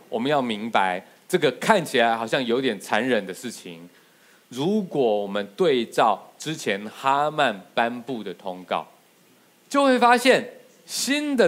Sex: male